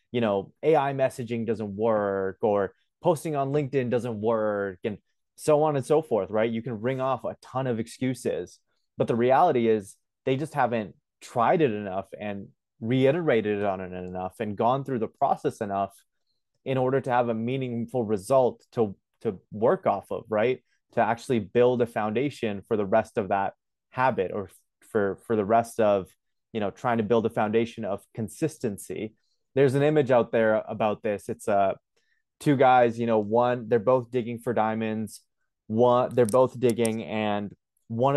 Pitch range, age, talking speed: 105-130 Hz, 20-39, 175 wpm